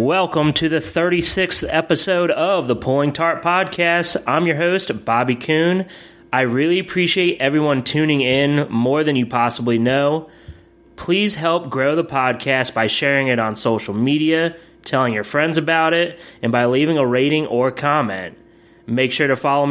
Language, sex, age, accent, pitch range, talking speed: English, male, 30-49, American, 120-165 Hz, 160 wpm